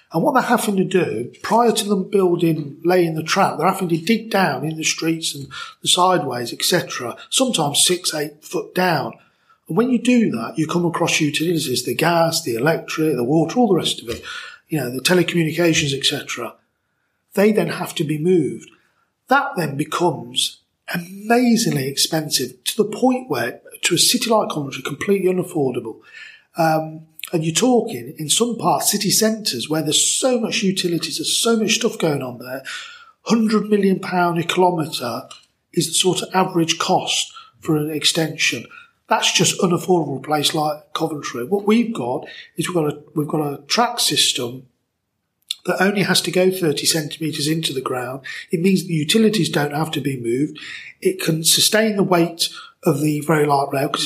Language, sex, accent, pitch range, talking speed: English, male, British, 155-210 Hz, 180 wpm